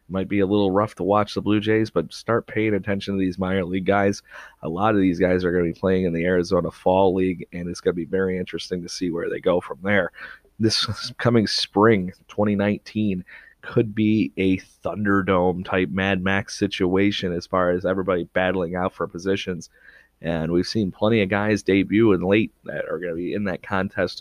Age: 30-49